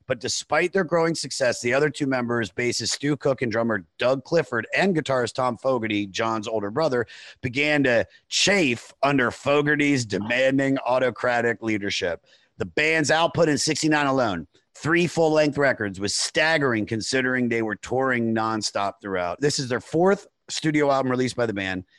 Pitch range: 110-140 Hz